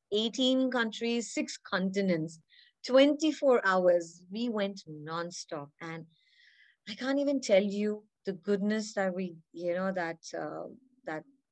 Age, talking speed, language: 30-49, 130 wpm, English